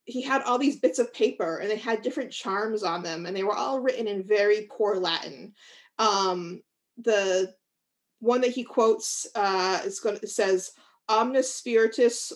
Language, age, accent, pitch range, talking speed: English, 30-49, American, 195-265 Hz, 180 wpm